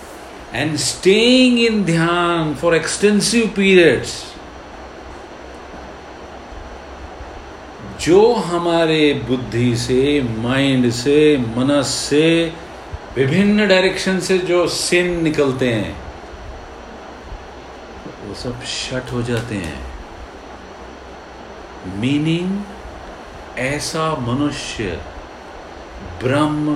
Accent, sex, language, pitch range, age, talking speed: native, male, Hindi, 120-160 Hz, 50-69, 70 wpm